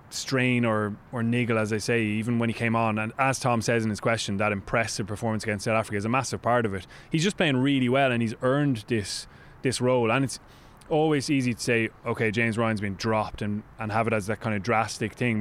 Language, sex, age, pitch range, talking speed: English, male, 20-39, 110-125 Hz, 245 wpm